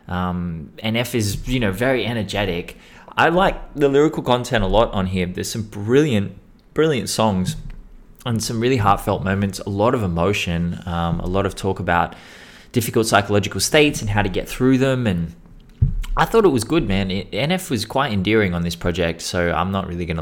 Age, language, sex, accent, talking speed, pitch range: 20-39, English, male, Australian, 195 wpm, 85-110 Hz